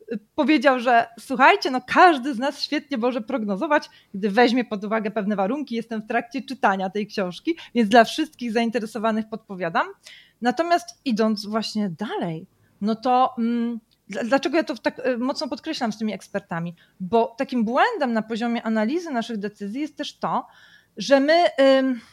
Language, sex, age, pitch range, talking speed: Polish, female, 30-49, 220-290 Hz, 145 wpm